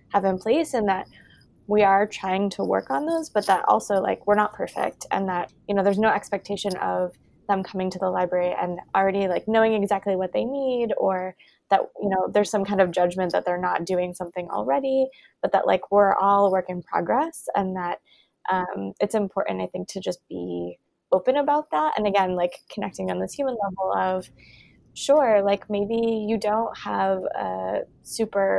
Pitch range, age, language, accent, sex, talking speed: 185-215 Hz, 20-39, English, American, female, 195 wpm